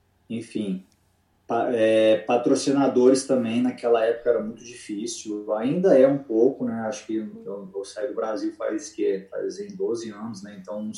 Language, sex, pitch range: Portuguese, male, 100-140 Hz